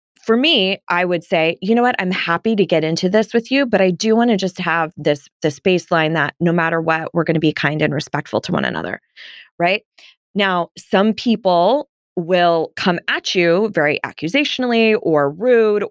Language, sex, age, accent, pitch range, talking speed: English, female, 20-39, American, 160-210 Hz, 195 wpm